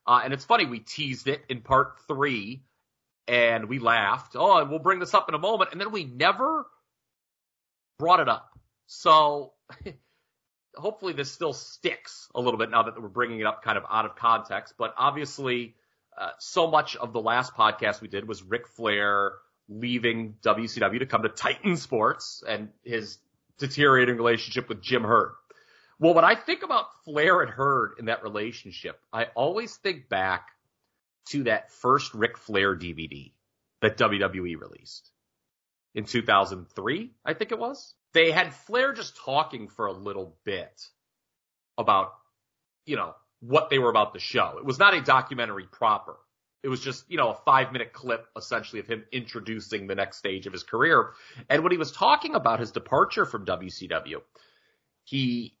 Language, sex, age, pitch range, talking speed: English, male, 30-49, 110-145 Hz, 175 wpm